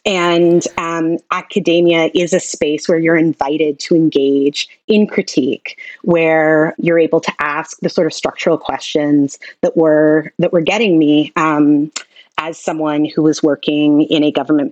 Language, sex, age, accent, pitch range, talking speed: English, female, 30-49, American, 150-180 Hz, 155 wpm